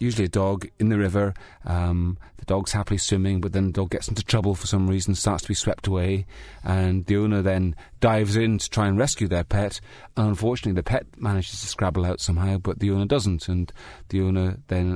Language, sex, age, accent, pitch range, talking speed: English, male, 30-49, British, 90-105 Hz, 220 wpm